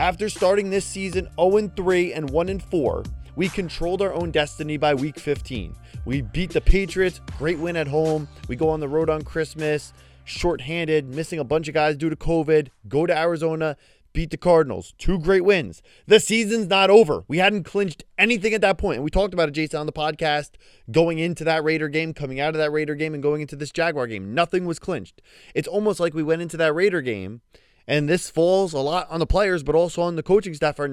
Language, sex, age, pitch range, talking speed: English, male, 20-39, 150-180 Hz, 215 wpm